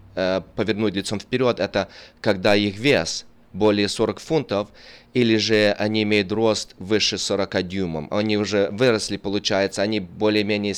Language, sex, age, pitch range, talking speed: Russian, male, 20-39, 95-110 Hz, 135 wpm